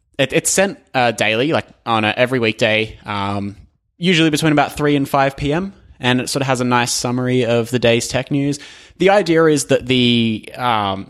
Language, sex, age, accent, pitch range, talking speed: English, male, 20-39, Australian, 115-150 Hz, 195 wpm